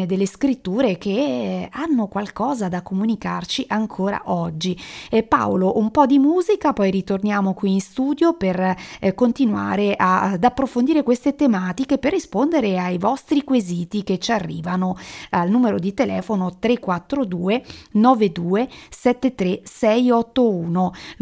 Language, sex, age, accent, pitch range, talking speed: Italian, female, 40-59, native, 185-245 Hz, 110 wpm